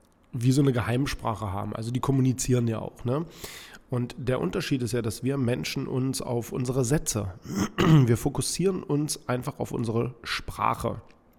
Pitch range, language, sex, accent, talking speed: 110-135 Hz, German, male, German, 160 wpm